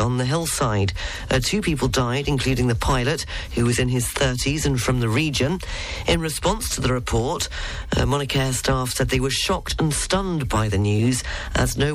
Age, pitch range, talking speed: 40-59, 110-145 Hz, 195 wpm